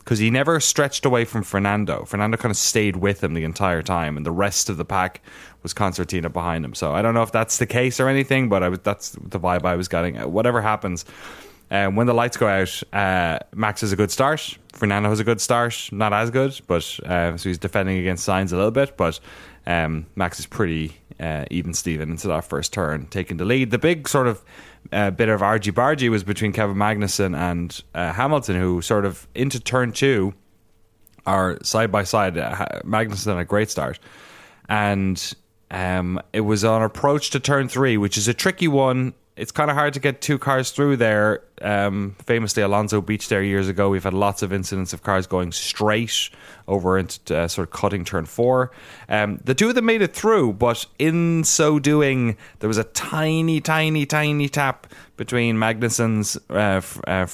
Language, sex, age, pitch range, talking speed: English, male, 20-39, 95-120 Hz, 200 wpm